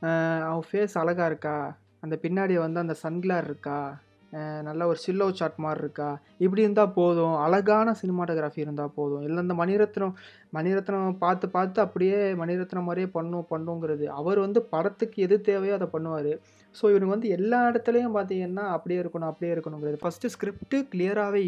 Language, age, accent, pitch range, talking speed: Tamil, 20-39, native, 160-195 Hz, 150 wpm